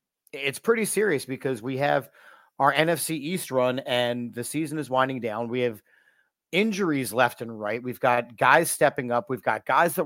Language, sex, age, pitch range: English, male, 40-59, 130-160 Hz